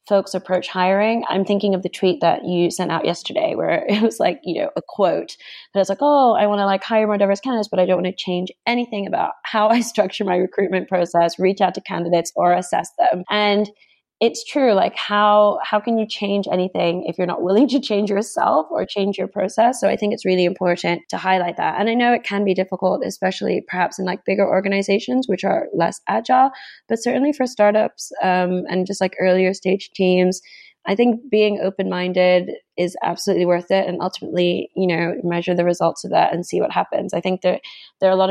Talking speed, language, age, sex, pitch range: 220 wpm, English, 20-39, female, 180-210 Hz